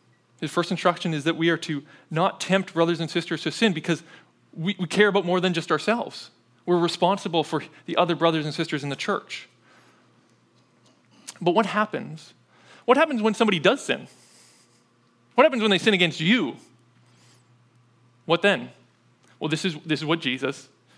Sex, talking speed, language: male, 170 wpm, English